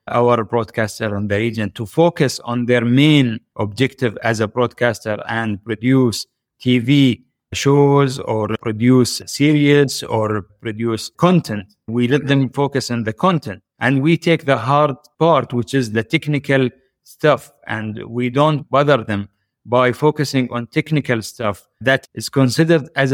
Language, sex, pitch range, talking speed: English, male, 115-140 Hz, 145 wpm